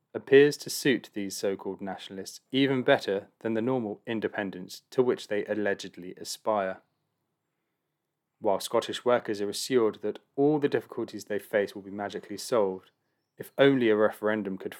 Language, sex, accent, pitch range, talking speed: English, male, British, 100-120 Hz, 150 wpm